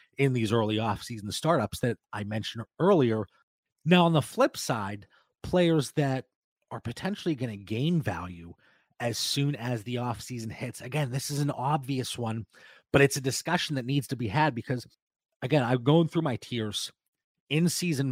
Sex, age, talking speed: male, 30-49, 170 wpm